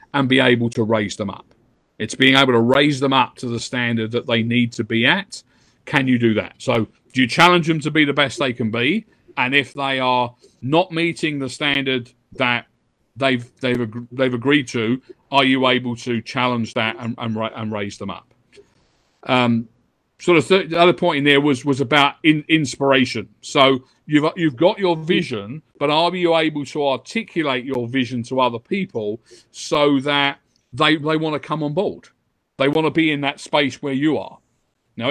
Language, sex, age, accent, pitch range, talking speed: English, male, 40-59, British, 125-160 Hz, 200 wpm